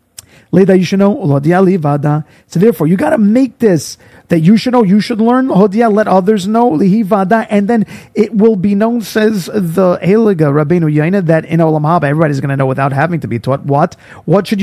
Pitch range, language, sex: 160-210 Hz, English, male